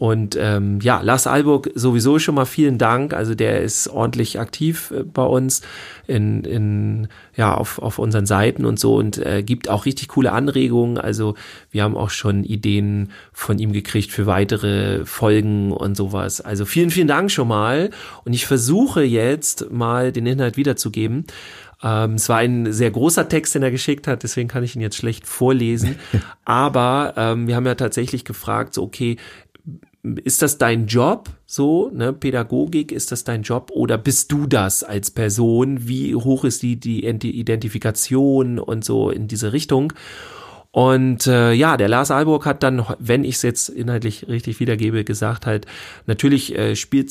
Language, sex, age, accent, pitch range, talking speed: German, male, 40-59, German, 110-135 Hz, 175 wpm